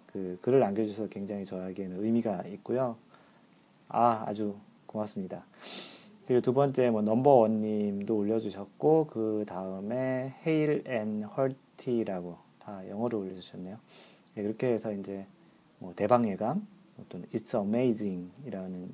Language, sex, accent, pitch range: Korean, male, native, 105-130 Hz